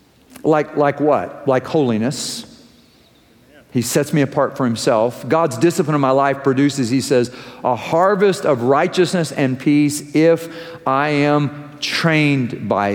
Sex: male